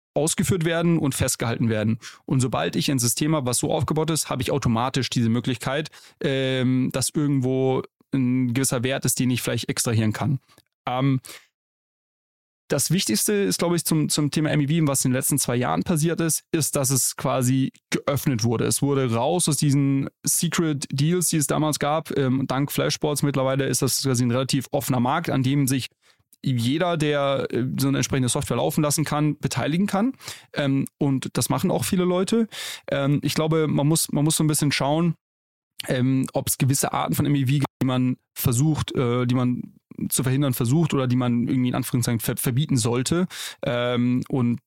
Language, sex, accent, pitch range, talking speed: German, male, German, 125-150 Hz, 170 wpm